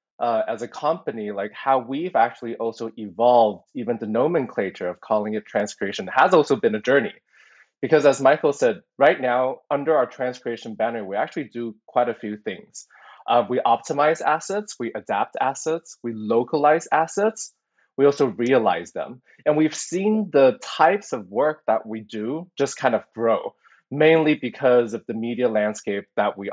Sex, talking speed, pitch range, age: male, 170 wpm, 115-150 Hz, 20-39